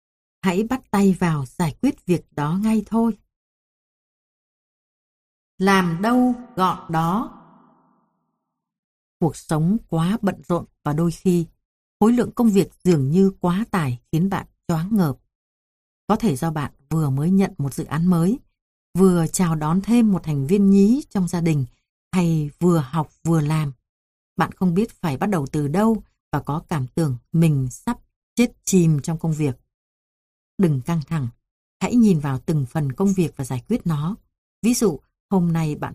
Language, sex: Vietnamese, female